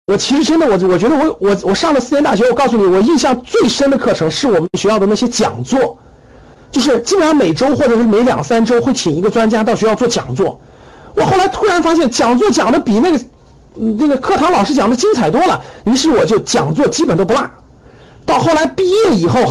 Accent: native